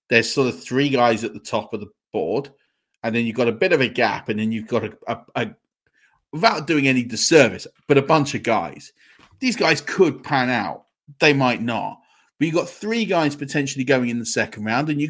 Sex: male